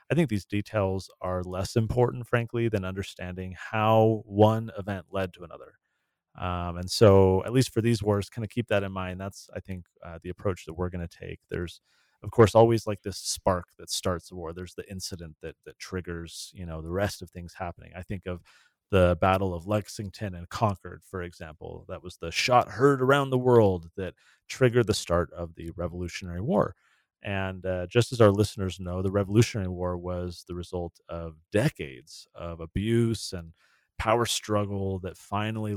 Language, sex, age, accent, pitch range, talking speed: English, male, 30-49, American, 90-105 Hz, 190 wpm